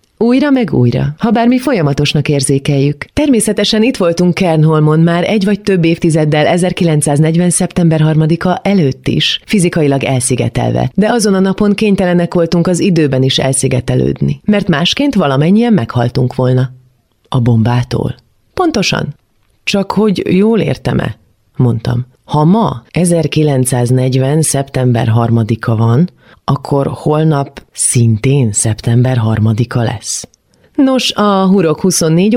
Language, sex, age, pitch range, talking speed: Hungarian, female, 30-49, 125-175 Hz, 115 wpm